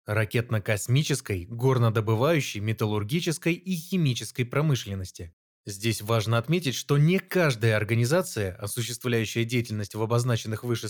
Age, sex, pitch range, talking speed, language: 20-39, male, 110-155 Hz, 100 wpm, Russian